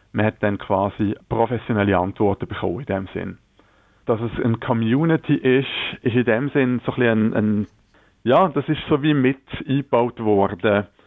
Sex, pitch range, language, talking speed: male, 100-115 Hz, German, 170 wpm